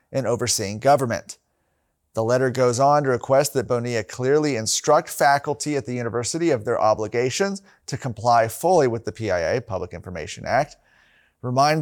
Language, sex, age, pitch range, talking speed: English, male, 30-49, 120-150 Hz, 150 wpm